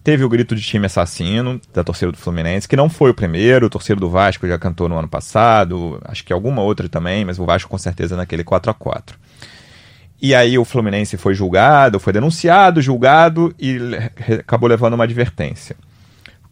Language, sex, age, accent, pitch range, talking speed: Portuguese, male, 30-49, Brazilian, 110-150 Hz, 185 wpm